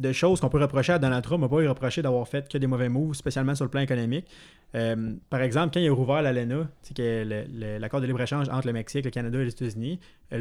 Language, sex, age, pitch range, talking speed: French, male, 20-39, 120-140 Hz, 255 wpm